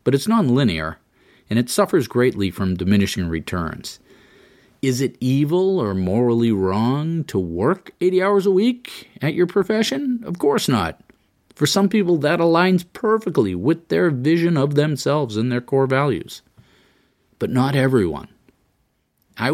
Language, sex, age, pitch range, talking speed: English, male, 40-59, 95-145 Hz, 145 wpm